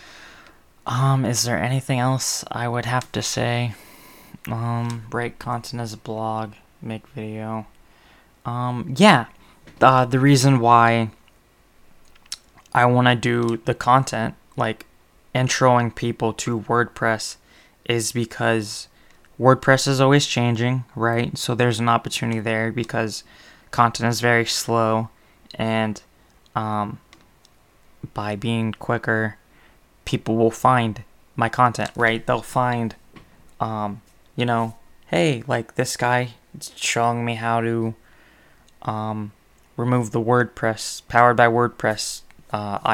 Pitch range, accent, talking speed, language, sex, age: 110-120 Hz, American, 120 wpm, English, male, 20-39